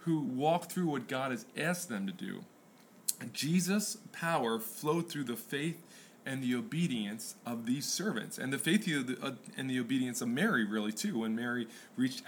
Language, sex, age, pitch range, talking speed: English, male, 20-39, 125-200 Hz, 170 wpm